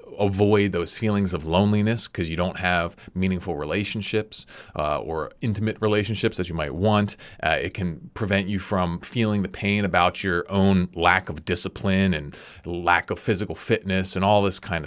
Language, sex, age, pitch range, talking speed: English, male, 30-49, 90-120 Hz, 175 wpm